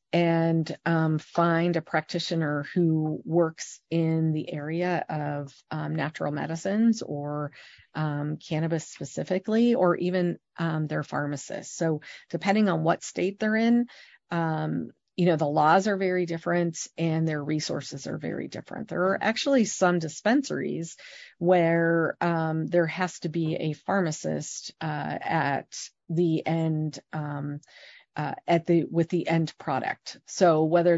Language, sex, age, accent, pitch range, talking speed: English, female, 40-59, American, 155-180 Hz, 140 wpm